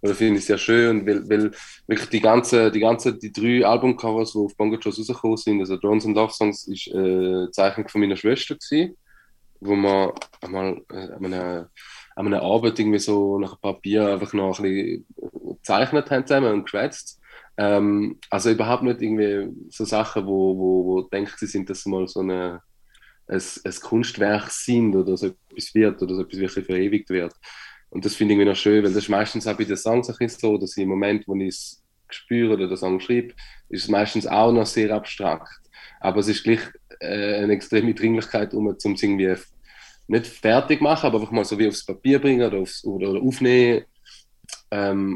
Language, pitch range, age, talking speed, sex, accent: German, 95-115 Hz, 20-39, 195 wpm, male, German